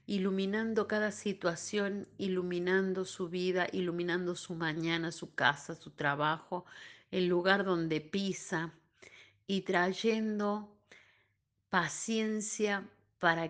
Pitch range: 165-200 Hz